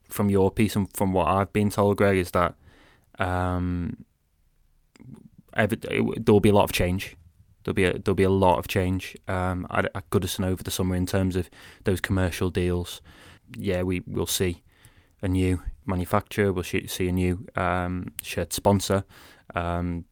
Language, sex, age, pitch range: English, male, 20-39, 90-105 Hz